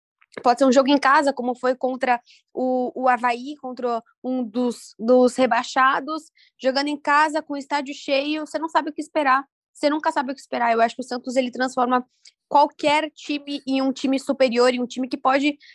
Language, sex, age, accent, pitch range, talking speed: Portuguese, female, 10-29, Brazilian, 250-310 Hz, 200 wpm